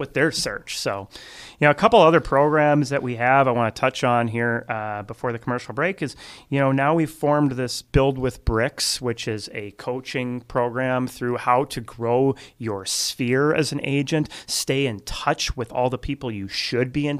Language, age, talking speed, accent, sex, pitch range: English, 30-49, 205 wpm, American, male, 110-130 Hz